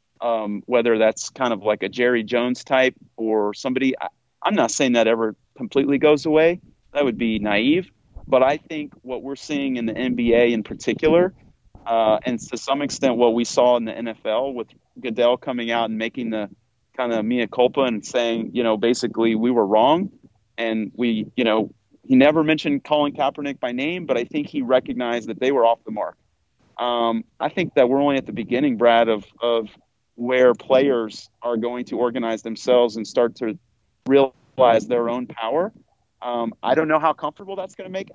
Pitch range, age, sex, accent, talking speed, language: 115-150 Hz, 40-59, male, American, 195 wpm, English